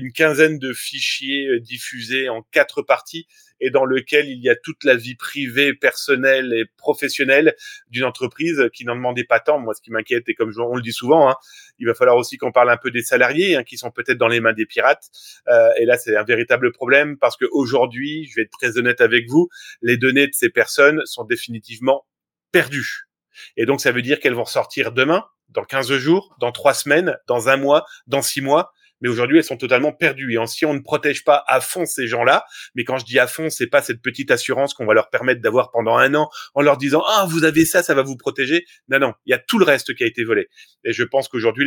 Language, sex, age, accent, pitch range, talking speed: French, male, 30-49, French, 125-175 Hz, 245 wpm